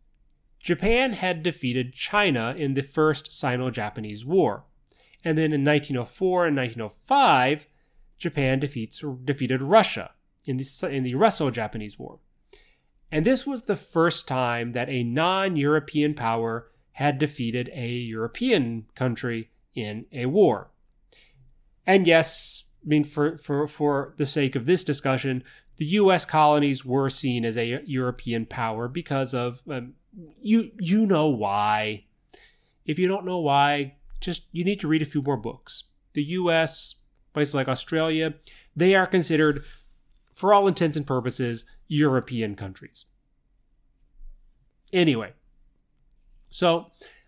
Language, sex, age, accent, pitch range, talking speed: English, male, 30-49, American, 125-170 Hz, 125 wpm